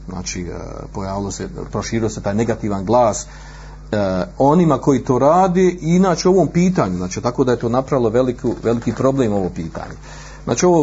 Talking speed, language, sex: 160 wpm, Croatian, male